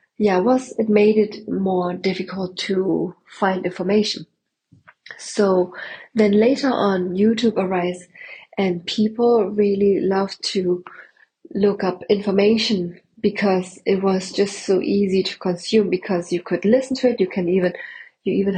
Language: English